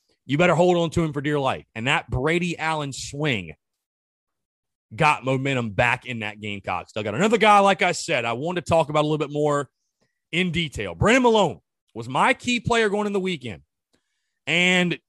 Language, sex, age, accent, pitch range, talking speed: English, male, 30-49, American, 120-180 Hz, 200 wpm